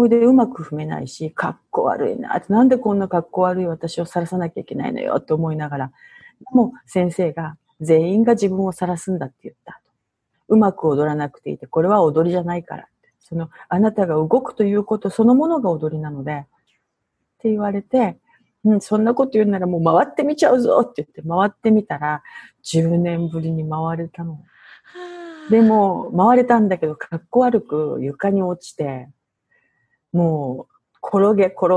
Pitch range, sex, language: 155-220 Hz, female, Japanese